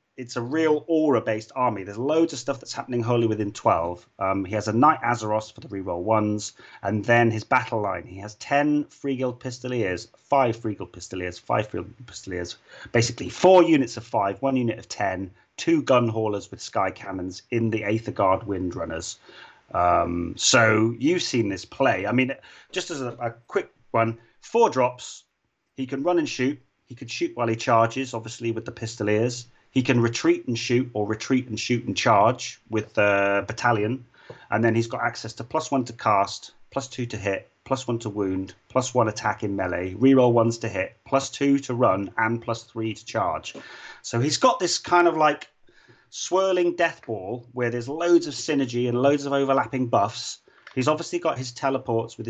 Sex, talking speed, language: male, 195 wpm, English